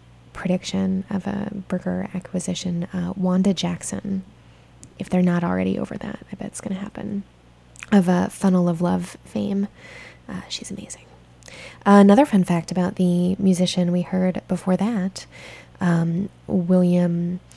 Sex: female